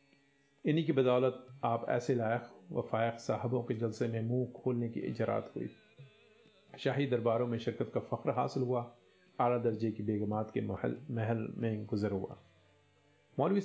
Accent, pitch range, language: native, 110-130 Hz, Hindi